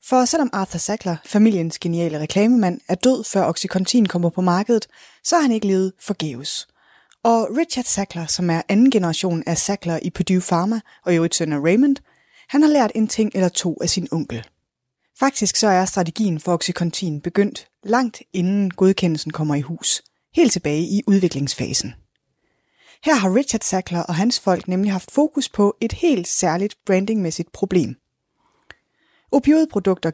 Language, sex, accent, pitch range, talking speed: Danish, female, native, 165-215 Hz, 155 wpm